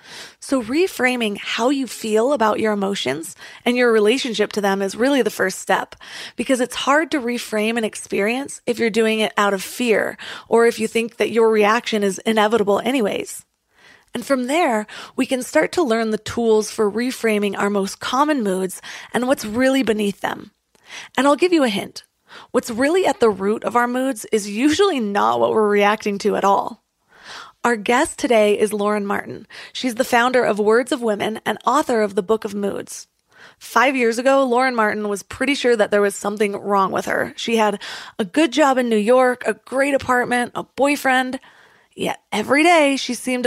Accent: American